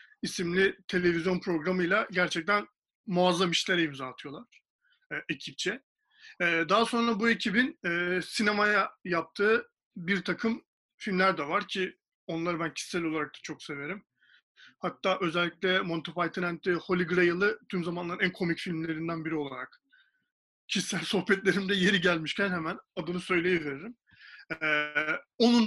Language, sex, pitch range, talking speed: Turkish, male, 175-230 Hz, 130 wpm